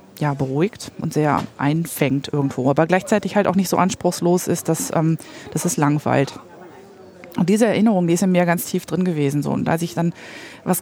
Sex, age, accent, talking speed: female, 20-39, German, 200 wpm